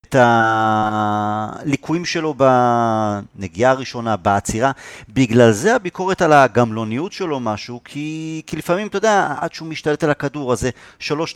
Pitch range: 115-170 Hz